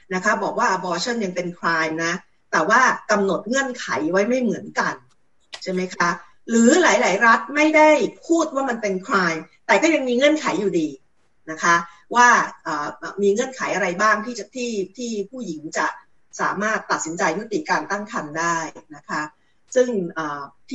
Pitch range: 175-240 Hz